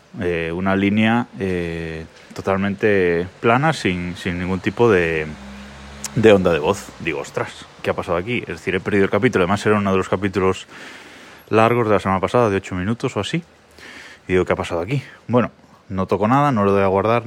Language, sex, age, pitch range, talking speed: Spanish, male, 20-39, 90-125 Hz, 200 wpm